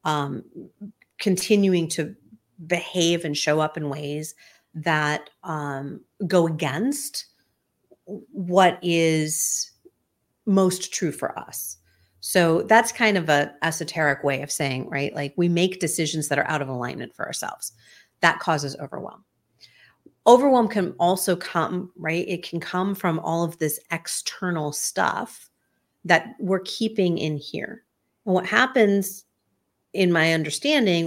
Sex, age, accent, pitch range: female, 40-59, American, 155-195 Hz